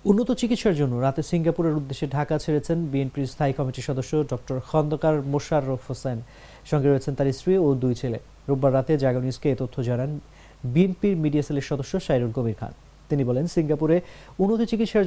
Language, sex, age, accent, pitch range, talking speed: English, male, 30-49, Indian, 125-160 Hz, 145 wpm